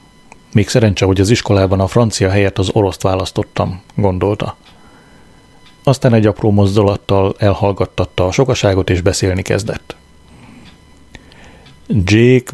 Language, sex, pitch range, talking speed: Hungarian, male, 100-120 Hz, 110 wpm